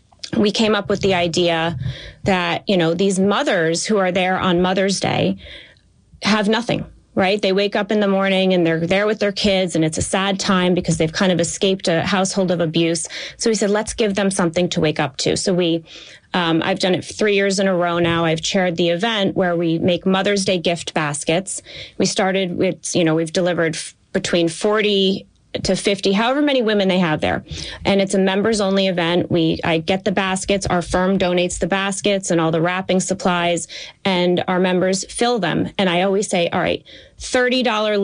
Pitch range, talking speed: 170-195 Hz, 205 wpm